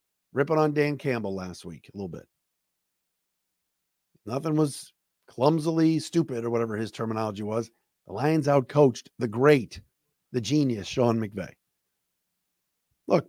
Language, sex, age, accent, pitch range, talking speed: English, male, 50-69, American, 125-185 Hz, 125 wpm